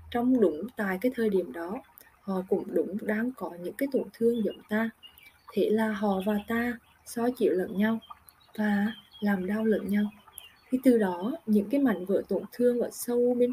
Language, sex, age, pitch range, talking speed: Vietnamese, female, 20-39, 190-230 Hz, 195 wpm